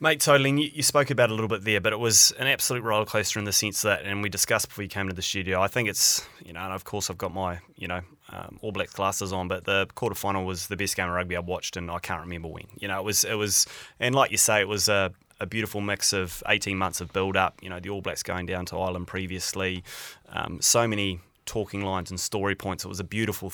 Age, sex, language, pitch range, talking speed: 20-39, male, English, 95-110 Hz, 280 wpm